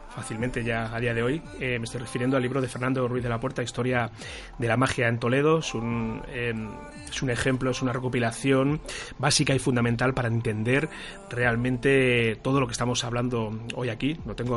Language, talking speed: Spanish, 190 wpm